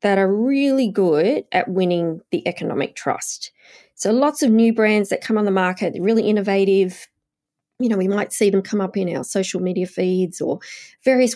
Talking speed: 195 wpm